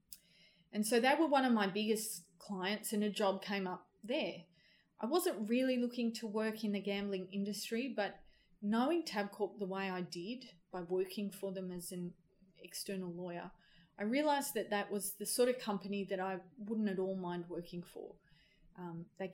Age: 30-49